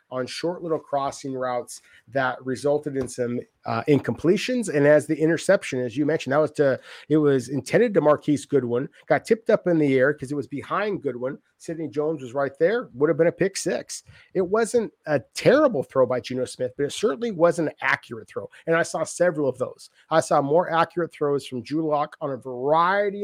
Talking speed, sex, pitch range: 205 wpm, male, 135-185 Hz